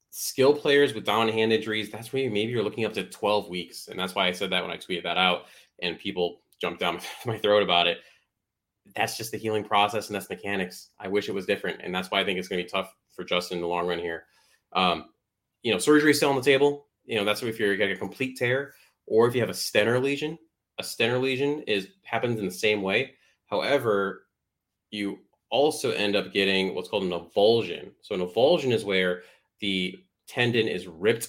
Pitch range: 95-125 Hz